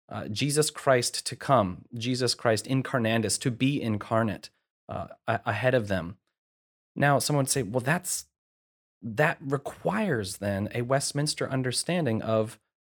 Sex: male